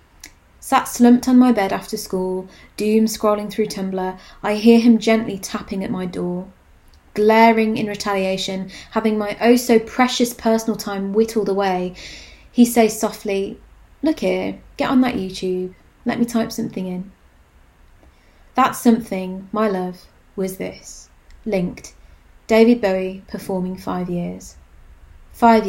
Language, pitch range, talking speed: English, 180-220 Hz, 130 wpm